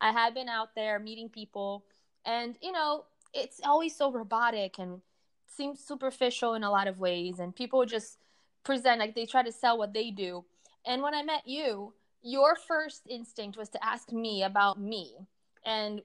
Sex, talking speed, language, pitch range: female, 185 wpm, English, 210-260 Hz